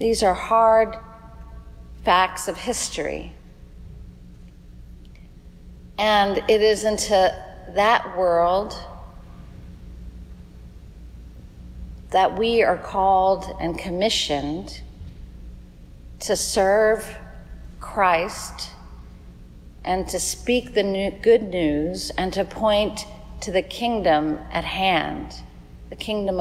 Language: English